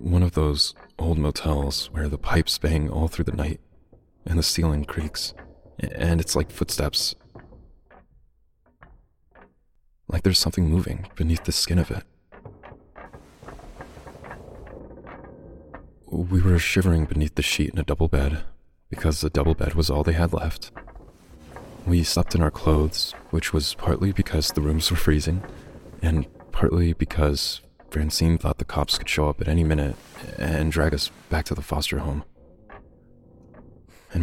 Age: 30-49